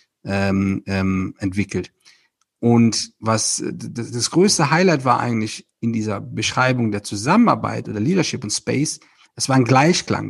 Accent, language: German, German